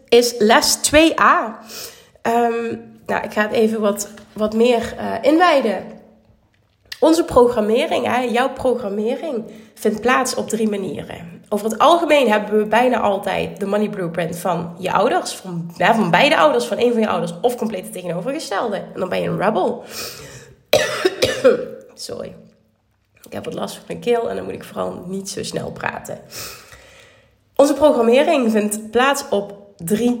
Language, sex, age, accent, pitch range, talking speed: Dutch, female, 30-49, Dutch, 185-240 Hz, 150 wpm